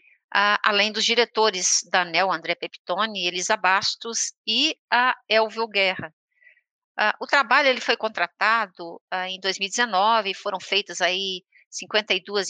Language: Portuguese